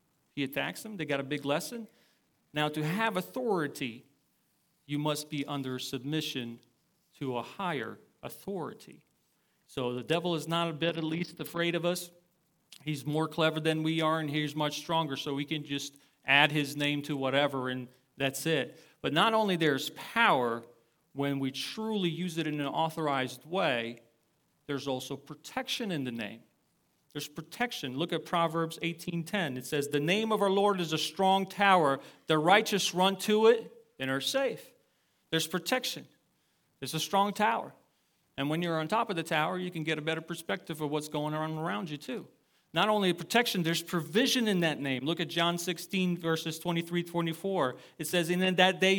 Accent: American